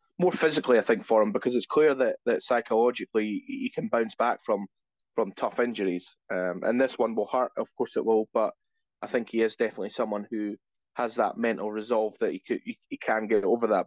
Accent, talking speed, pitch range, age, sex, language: British, 215 wpm, 105-125 Hz, 20-39, male, English